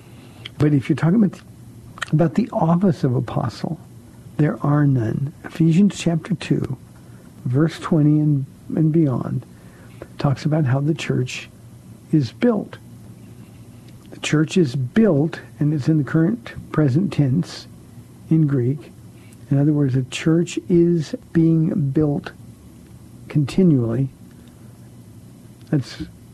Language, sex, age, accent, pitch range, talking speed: English, male, 60-79, American, 130-160 Hz, 115 wpm